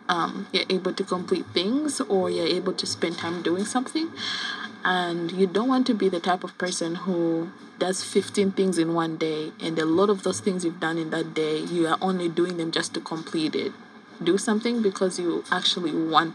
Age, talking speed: 20-39, 210 wpm